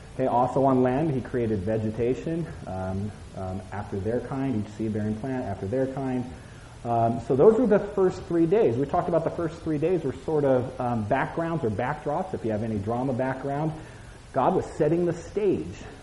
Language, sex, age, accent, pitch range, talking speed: English, male, 30-49, American, 110-155 Hz, 195 wpm